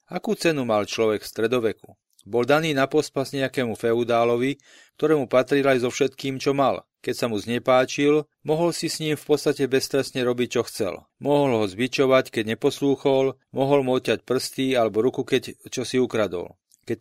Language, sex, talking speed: Slovak, male, 175 wpm